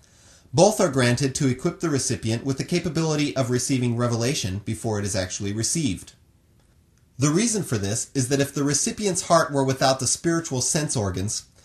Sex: male